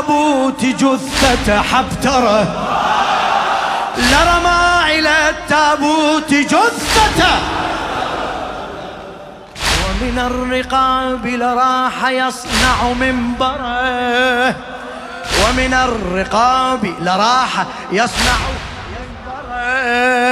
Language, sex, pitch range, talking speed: Arabic, male, 245-290 Hz, 60 wpm